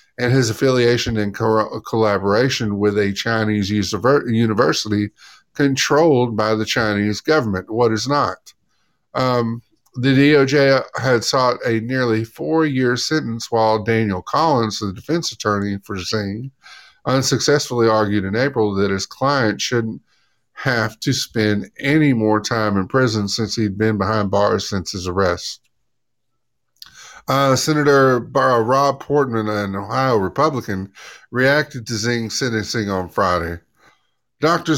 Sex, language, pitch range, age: male, English, 105-135 Hz, 50-69